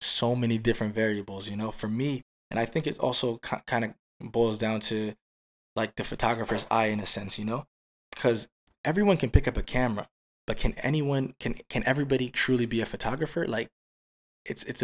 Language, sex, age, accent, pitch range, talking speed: English, male, 20-39, American, 105-120 Hz, 195 wpm